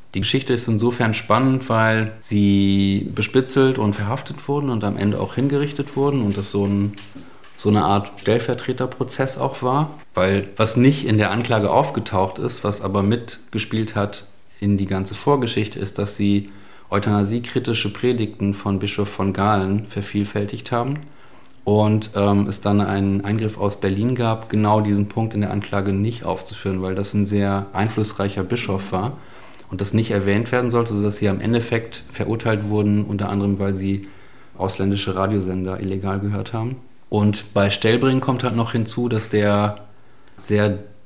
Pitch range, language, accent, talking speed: 100-120 Hz, German, German, 160 wpm